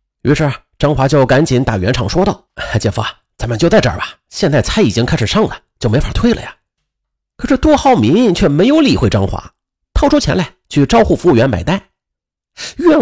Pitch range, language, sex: 105-180 Hz, Chinese, male